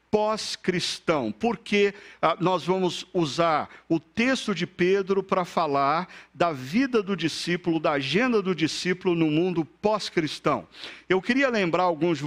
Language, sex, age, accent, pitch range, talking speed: Portuguese, male, 50-69, Brazilian, 155-195 Hz, 130 wpm